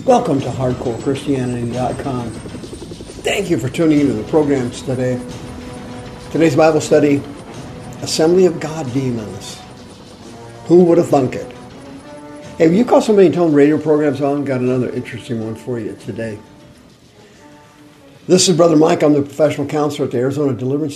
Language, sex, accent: English, male, American